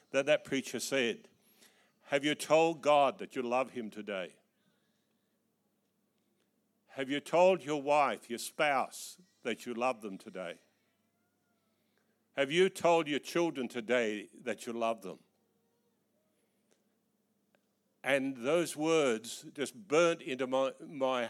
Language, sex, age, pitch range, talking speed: English, male, 60-79, 130-190 Hz, 120 wpm